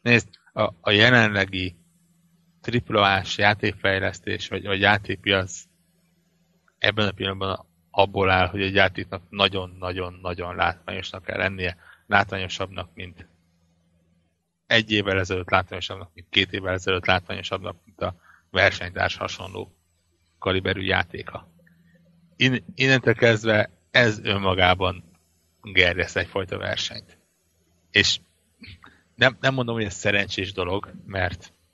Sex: male